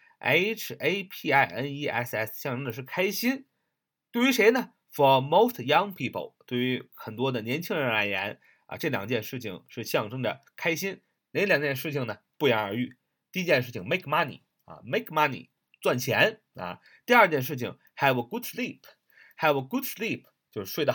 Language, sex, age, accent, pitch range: Chinese, male, 30-49, native, 120-160 Hz